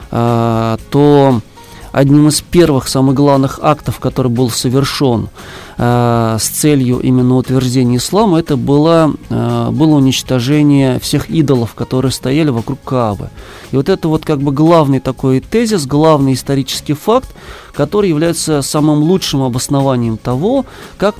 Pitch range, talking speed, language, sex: 130-160 Hz, 125 wpm, Russian, male